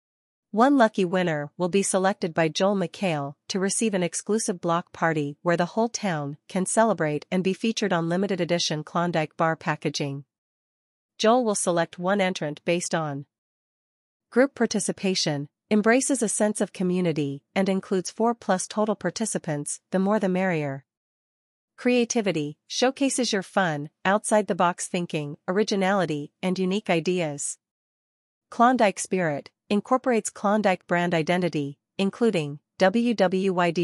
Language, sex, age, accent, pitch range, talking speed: English, female, 40-59, American, 160-210 Hz, 125 wpm